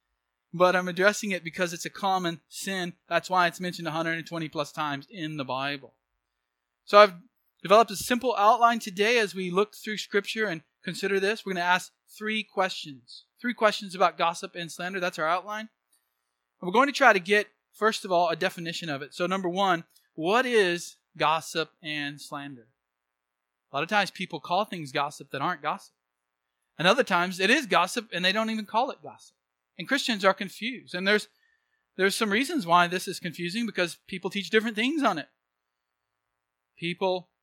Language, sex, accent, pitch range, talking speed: English, male, American, 140-195 Hz, 185 wpm